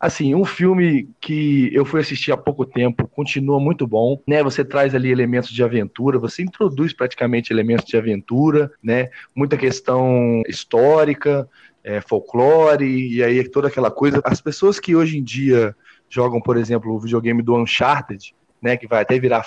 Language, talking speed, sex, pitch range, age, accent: Portuguese, 170 wpm, male, 120-160 Hz, 20-39, Brazilian